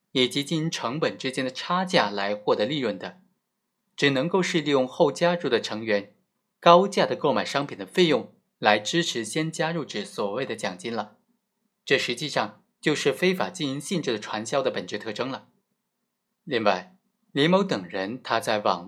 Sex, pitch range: male, 125-185 Hz